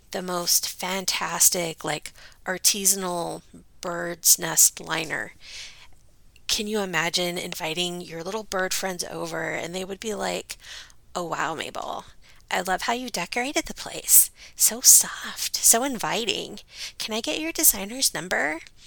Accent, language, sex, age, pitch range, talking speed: American, English, female, 30-49, 175-225 Hz, 135 wpm